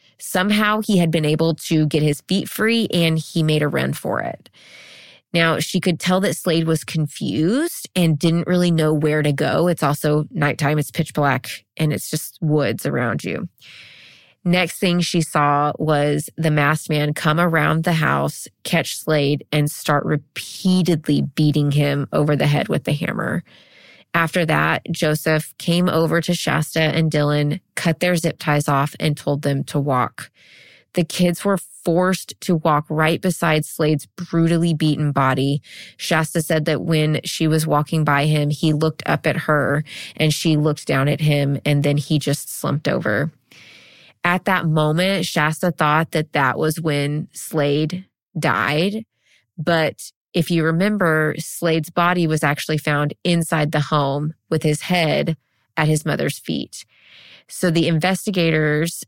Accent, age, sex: American, 20-39, female